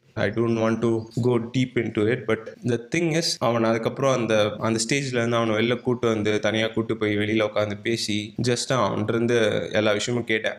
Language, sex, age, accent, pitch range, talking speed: Tamil, male, 20-39, native, 115-135 Hz, 205 wpm